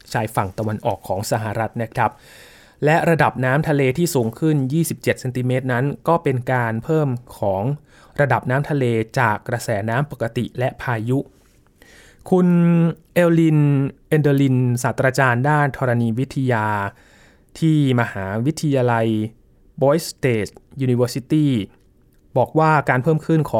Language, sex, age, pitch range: Thai, male, 20-39, 120-155 Hz